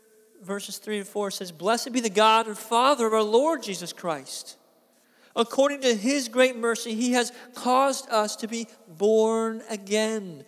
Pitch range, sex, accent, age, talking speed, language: 195-245 Hz, male, American, 40-59, 165 wpm, English